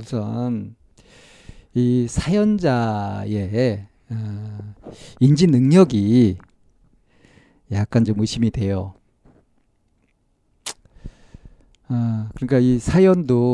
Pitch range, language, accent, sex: 110-140 Hz, Korean, native, male